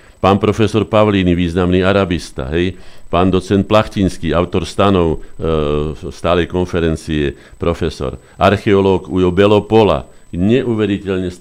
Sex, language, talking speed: male, Slovak, 100 wpm